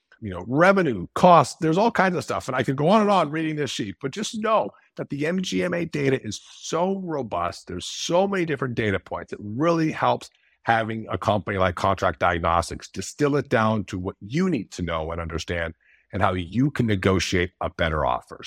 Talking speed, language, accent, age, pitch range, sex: 205 wpm, English, American, 50-69, 100-150 Hz, male